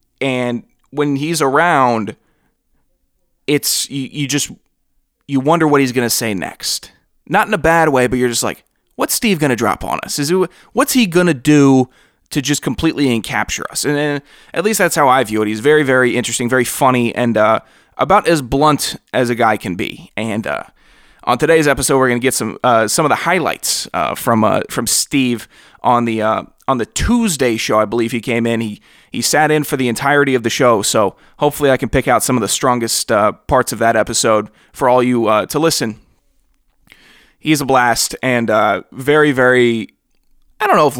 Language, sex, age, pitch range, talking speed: English, male, 20-39, 115-145 Hz, 200 wpm